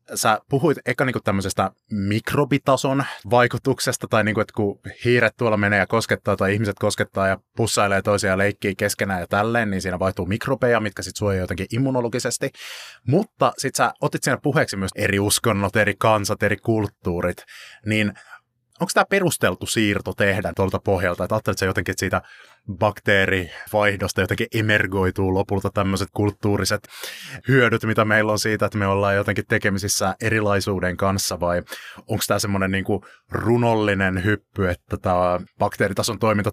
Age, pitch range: 20-39, 95-110 Hz